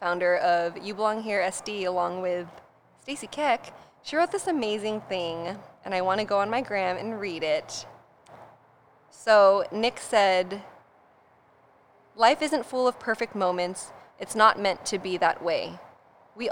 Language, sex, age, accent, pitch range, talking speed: English, female, 20-39, American, 185-220 Hz, 155 wpm